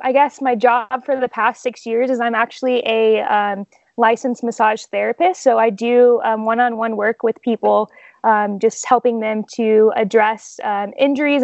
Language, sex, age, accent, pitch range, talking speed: English, female, 10-29, American, 215-250 Hz, 175 wpm